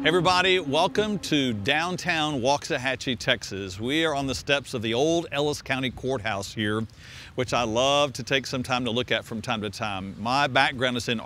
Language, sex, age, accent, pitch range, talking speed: English, male, 50-69, American, 110-150 Hz, 195 wpm